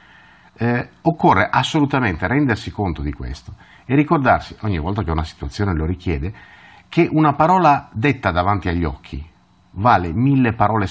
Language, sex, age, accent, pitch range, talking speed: Italian, male, 50-69, native, 85-120 Hz, 145 wpm